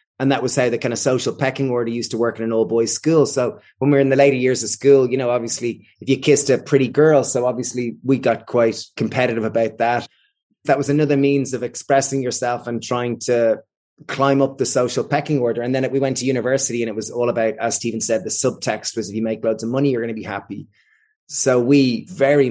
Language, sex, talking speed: English, male, 245 wpm